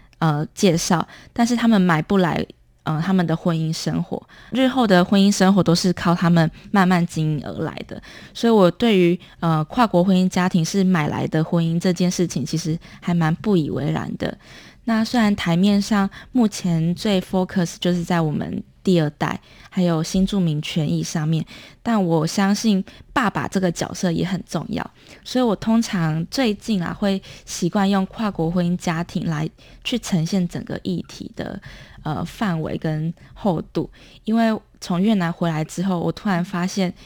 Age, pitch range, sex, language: 20-39, 170-210 Hz, female, Chinese